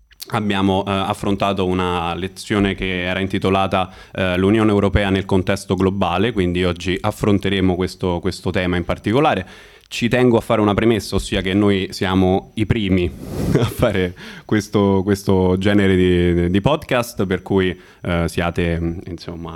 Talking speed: 145 wpm